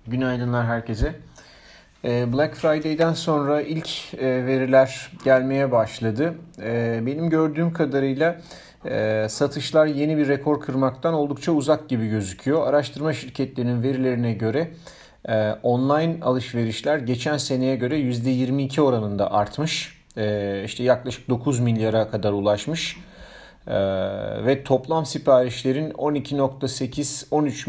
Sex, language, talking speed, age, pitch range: male, Turkish, 95 wpm, 40-59, 115-145 Hz